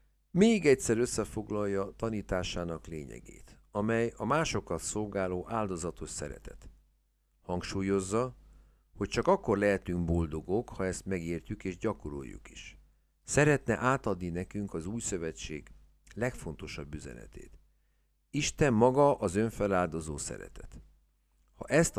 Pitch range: 80-110 Hz